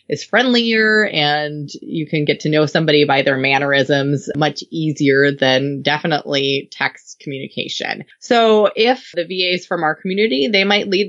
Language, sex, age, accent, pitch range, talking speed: English, female, 20-39, American, 150-185 Hz, 155 wpm